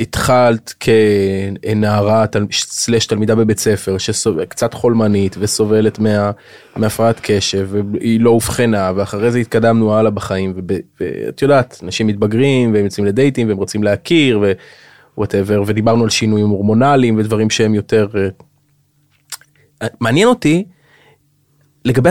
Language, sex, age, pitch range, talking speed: Hebrew, male, 20-39, 105-135 Hz, 115 wpm